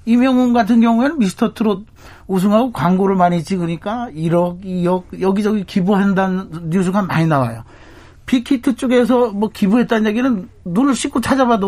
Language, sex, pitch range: Korean, male, 170-235 Hz